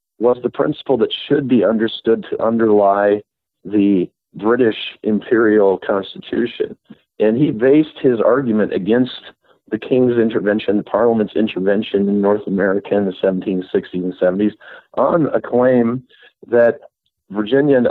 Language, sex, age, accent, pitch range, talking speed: English, male, 50-69, American, 95-115 Hz, 130 wpm